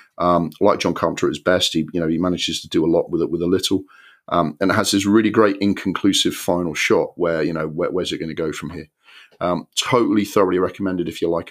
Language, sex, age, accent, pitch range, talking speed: English, male, 40-59, British, 90-110 Hz, 255 wpm